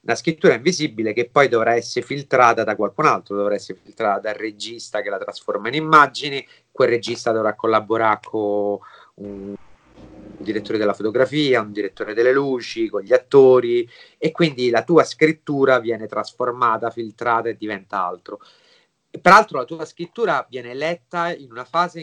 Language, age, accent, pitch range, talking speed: Italian, 30-49, native, 110-160 Hz, 160 wpm